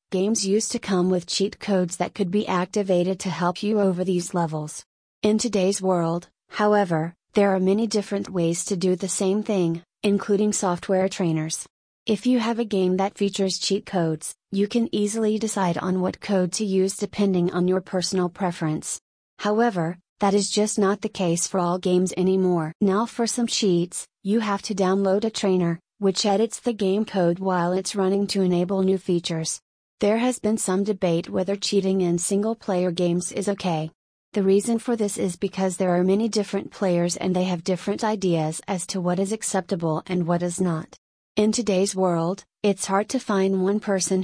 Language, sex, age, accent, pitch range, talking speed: English, female, 30-49, American, 180-205 Hz, 185 wpm